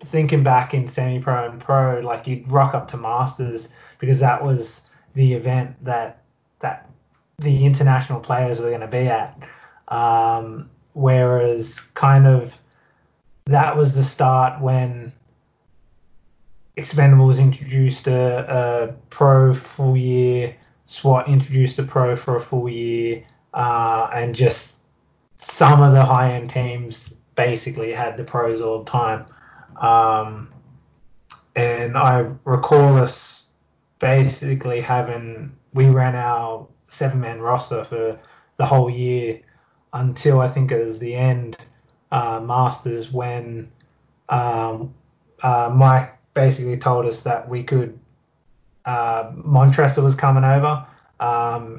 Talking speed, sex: 125 wpm, male